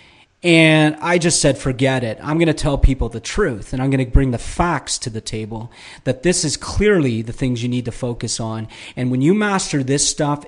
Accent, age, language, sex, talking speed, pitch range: American, 40-59, English, male, 230 wpm, 125-155 Hz